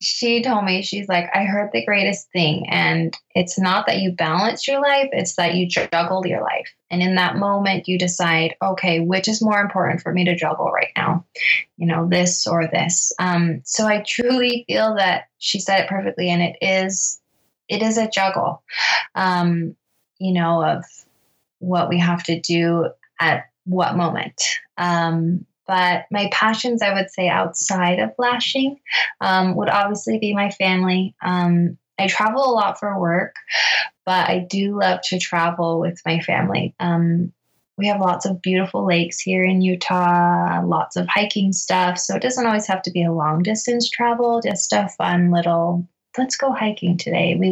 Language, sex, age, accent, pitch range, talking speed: English, female, 20-39, American, 175-205 Hz, 180 wpm